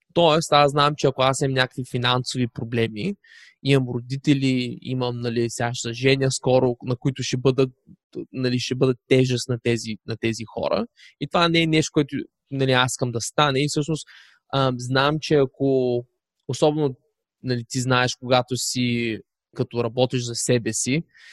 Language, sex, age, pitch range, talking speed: Bulgarian, male, 20-39, 120-140 Hz, 160 wpm